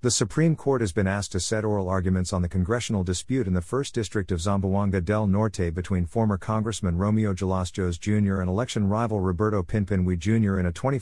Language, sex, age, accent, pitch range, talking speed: English, male, 50-69, American, 90-115 Hz, 200 wpm